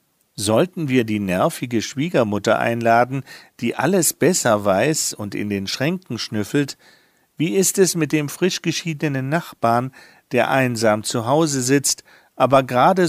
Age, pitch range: 50-69, 120-160 Hz